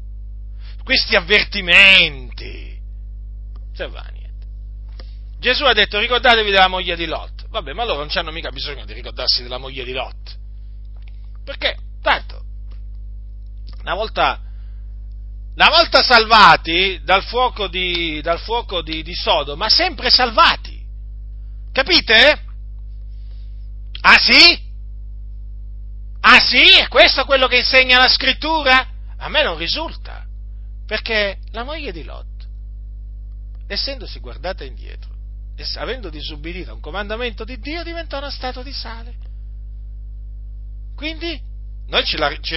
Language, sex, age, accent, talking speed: Italian, male, 40-59, native, 120 wpm